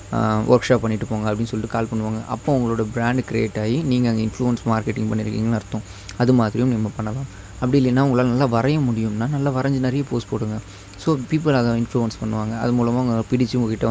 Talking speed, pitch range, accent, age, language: 185 wpm, 110-130 Hz, native, 20-39, Tamil